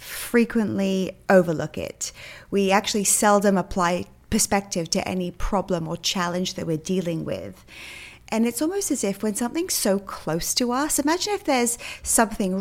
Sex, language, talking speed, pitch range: female, English, 150 wpm, 180-235 Hz